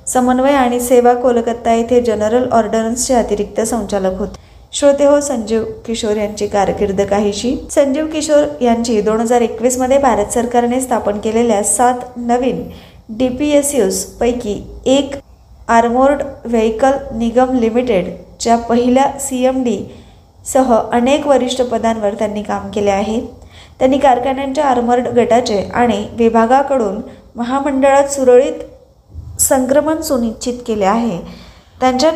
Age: 20-39